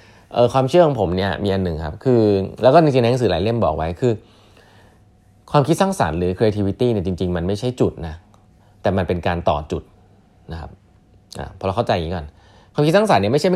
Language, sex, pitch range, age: Thai, male, 95-130 Hz, 20-39